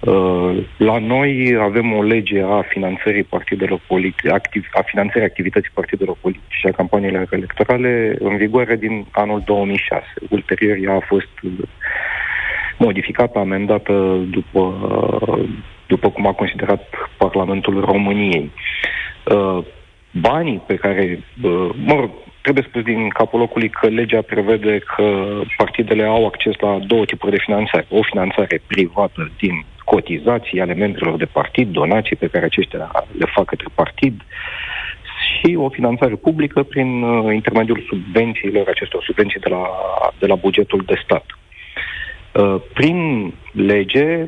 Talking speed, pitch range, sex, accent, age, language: 125 wpm, 100-120 Hz, male, native, 40-59, Romanian